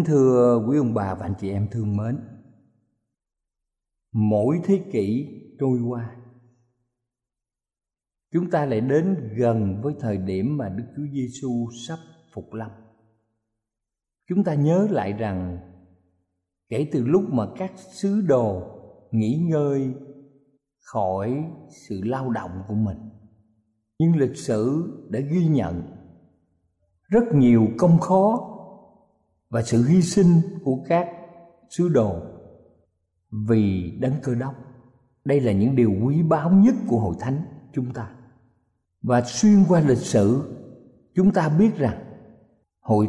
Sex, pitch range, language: male, 110-165 Hz, Thai